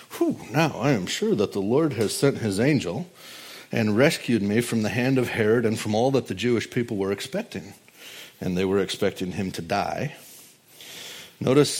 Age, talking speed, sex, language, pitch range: 50-69, 185 wpm, male, English, 110-135 Hz